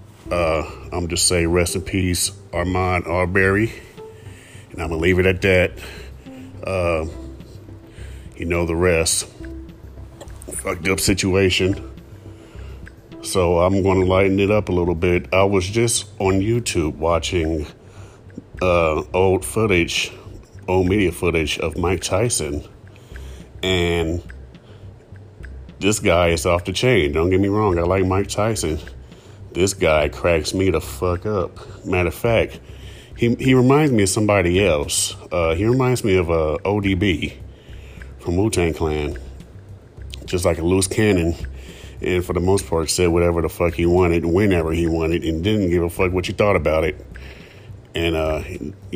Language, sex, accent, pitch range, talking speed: English, male, American, 85-100 Hz, 155 wpm